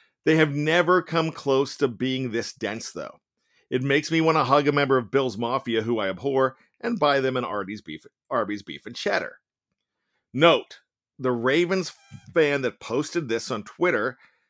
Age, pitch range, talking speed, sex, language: 40-59, 120-155 Hz, 175 wpm, male, English